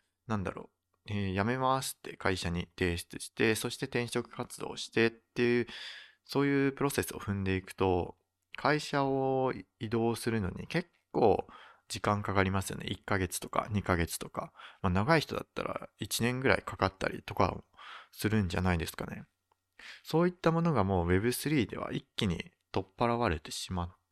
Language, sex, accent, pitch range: Japanese, male, native, 95-130 Hz